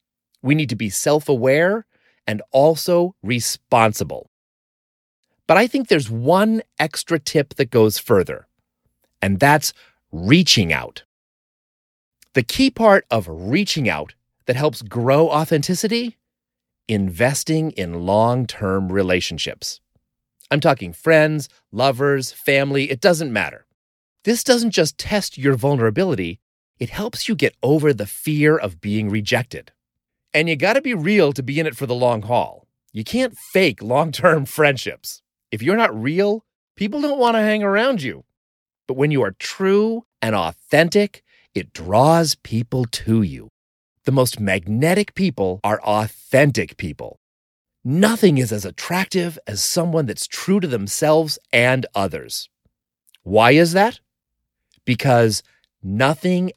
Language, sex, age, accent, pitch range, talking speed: English, male, 30-49, American, 105-165 Hz, 135 wpm